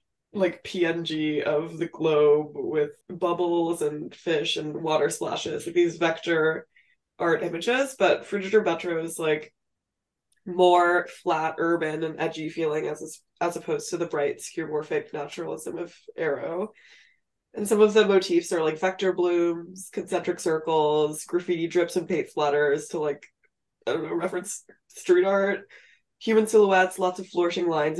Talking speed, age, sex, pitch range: 145 wpm, 20-39, female, 155-195 Hz